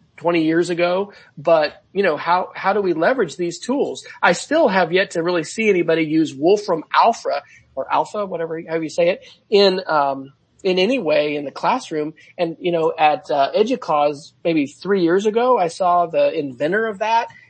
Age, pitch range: 40-59, 155-200 Hz